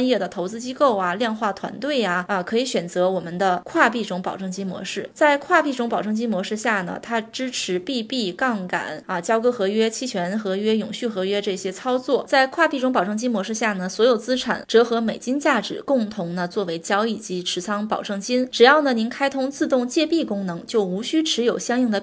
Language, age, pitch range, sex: Chinese, 20-39, 200-255 Hz, female